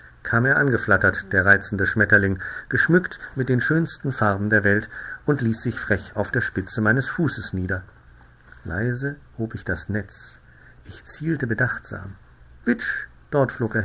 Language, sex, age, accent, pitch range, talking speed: German, male, 50-69, German, 95-130 Hz, 150 wpm